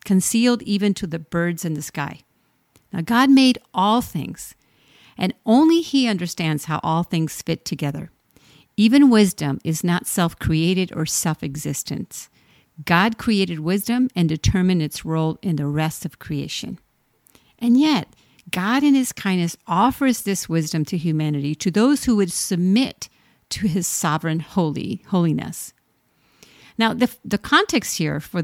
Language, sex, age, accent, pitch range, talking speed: English, female, 50-69, American, 165-225 Hz, 140 wpm